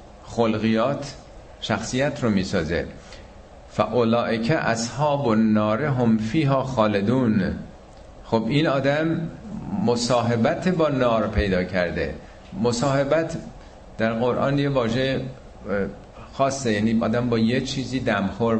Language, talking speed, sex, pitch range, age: Persian, 105 wpm, male, 100-130 Hz, 50-69